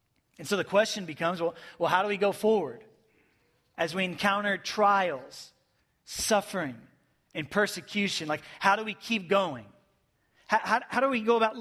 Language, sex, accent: English, male, American